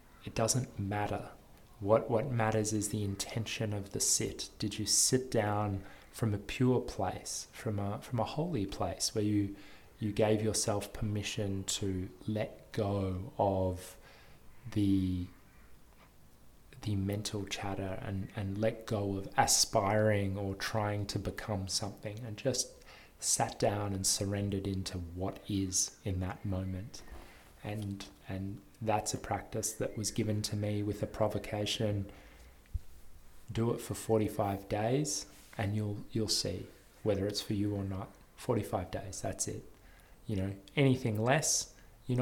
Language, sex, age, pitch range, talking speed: English, male, 20-39, 100-110 Hz, 140 wpm